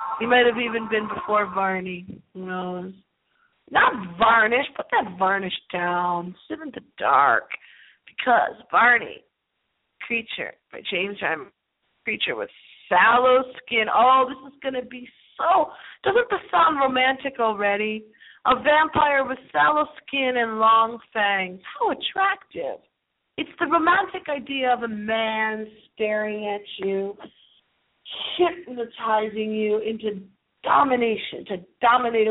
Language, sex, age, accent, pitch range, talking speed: English, female, 40-59, American, 210-290 Hz, 125 wpm